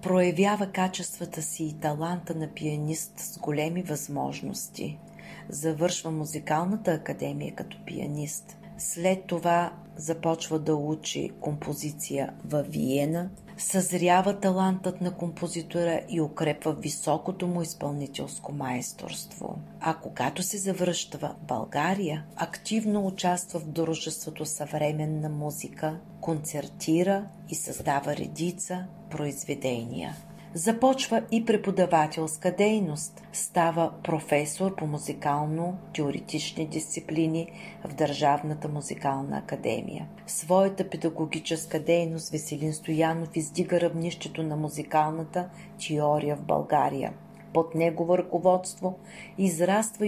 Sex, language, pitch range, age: female, Bulgarian, 155-180 Hz, 40-59